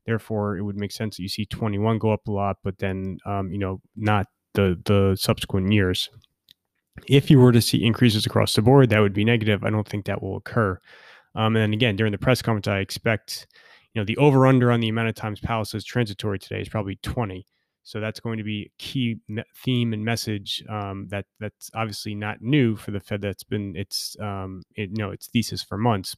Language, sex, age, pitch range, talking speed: English, male, 20-39, 105-120 Hz, 225 wpm